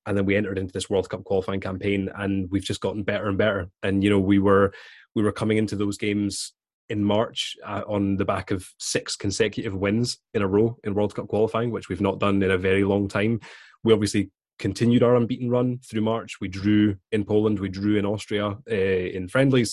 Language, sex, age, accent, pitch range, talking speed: English, male, 20-39, British, 100-110 Hz, 220 wpm